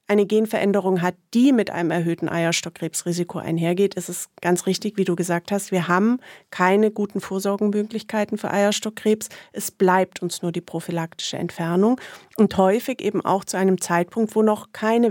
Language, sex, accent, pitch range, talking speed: German, female, German, 185-230 Hz, 165 wpm